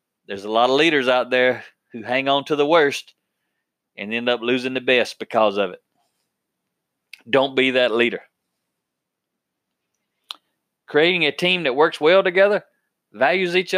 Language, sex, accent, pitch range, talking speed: English, male, American, 125-175 Hz, 155 wpm